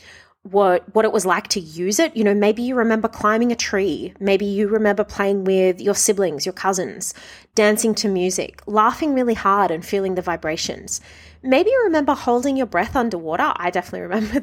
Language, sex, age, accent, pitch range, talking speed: English, female, 30-49, Australian, 185-240 Hz, 185 wpm